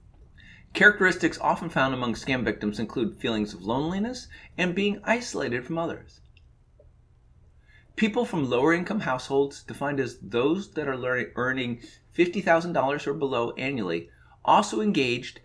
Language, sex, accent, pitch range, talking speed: English, male, American, 120-175 Hz, 125 wpm